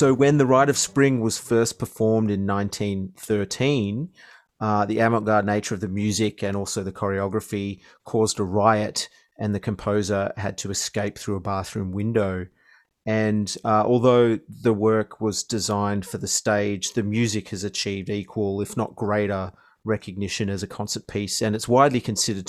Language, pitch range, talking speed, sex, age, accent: English, 100-115 Hz, 165 wpm, male, 30-49, Australian